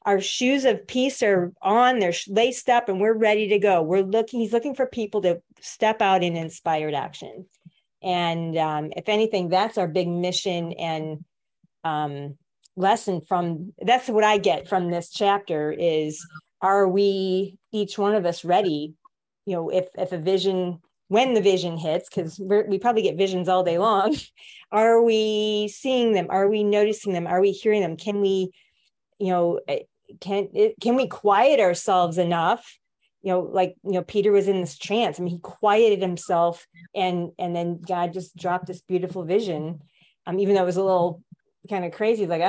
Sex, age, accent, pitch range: female, 30-49, American, 175-215 Hz